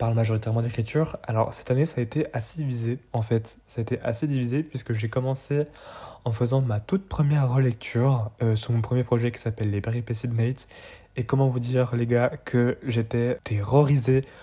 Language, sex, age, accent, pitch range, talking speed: French, male, 20-39, French, 110-130 Hz, 185 wpm